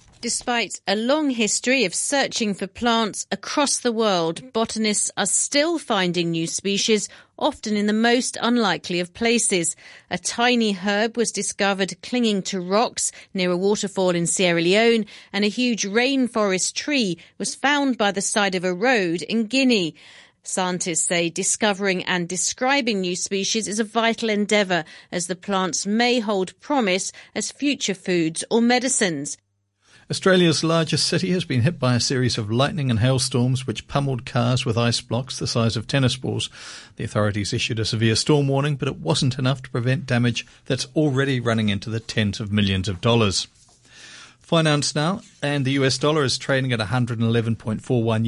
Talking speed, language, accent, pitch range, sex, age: 165 wpm, English, British, 125-210 Hz, female, 40-59